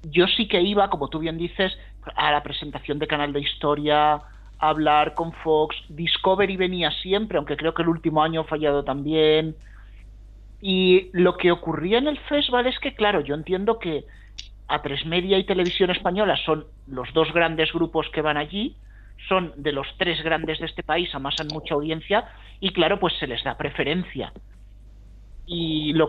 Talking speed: 175 wpm